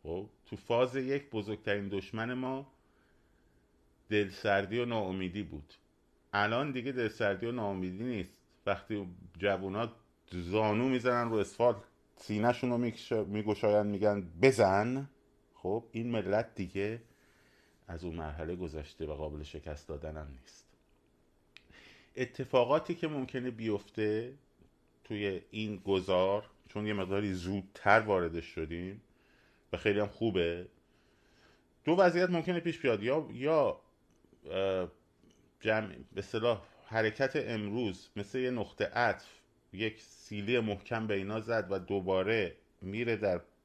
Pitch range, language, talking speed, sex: 90-115 Hz, Persian, 115 wpm, male